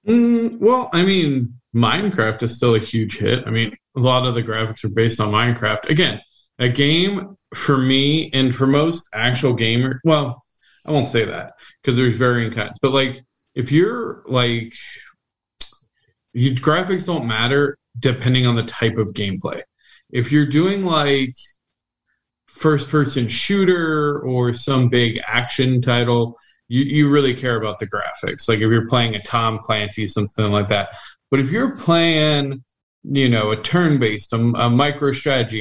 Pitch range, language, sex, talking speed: 110-135 Hz, English, male, 155 wpm